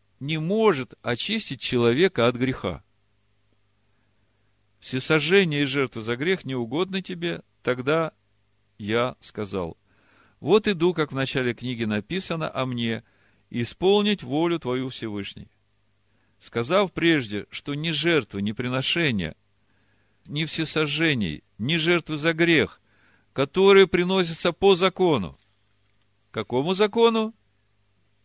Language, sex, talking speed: Russian, male, 100 wpm